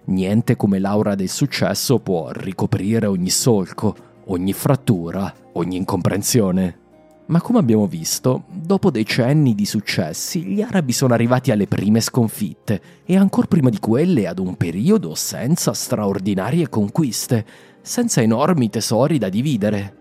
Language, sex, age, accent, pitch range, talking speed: Italian, male, 30-49, native, 100-150 Hz, 130 wpm